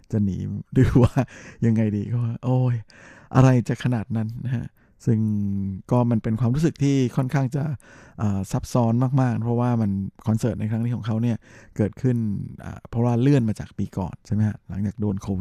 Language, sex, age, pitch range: Thai, male, 20-39, 105-120 Hz